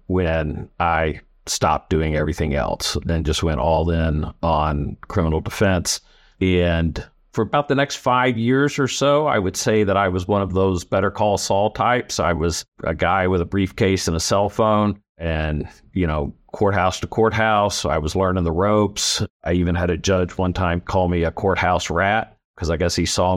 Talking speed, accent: 195 wpm, American